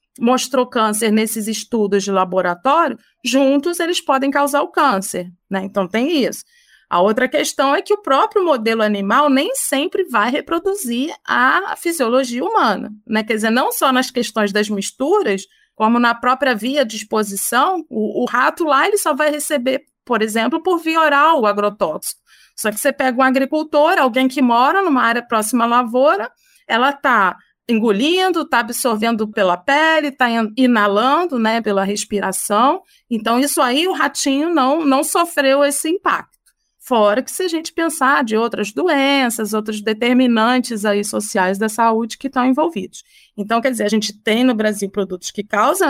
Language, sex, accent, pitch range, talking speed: Portuguese, female, Brazilian, 220-295 Hz, 165 wpm